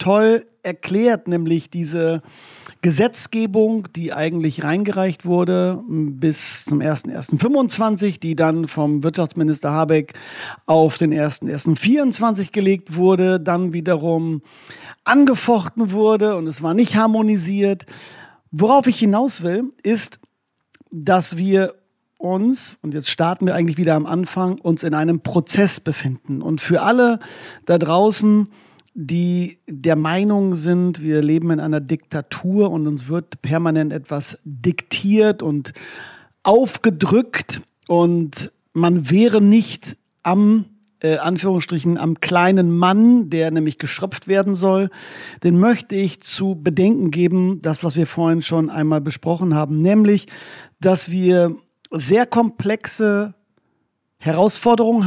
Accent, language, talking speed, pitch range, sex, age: German, German, 120 wpm, 160-205 Hz, male, 40-59